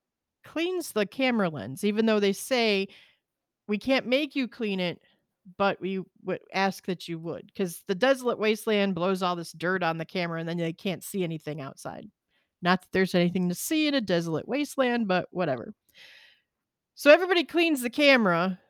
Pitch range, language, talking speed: 180-225 Hz, English, 180 wpm